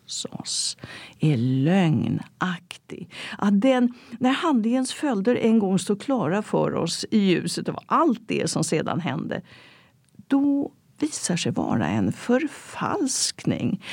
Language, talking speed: Swedish, 120 wpm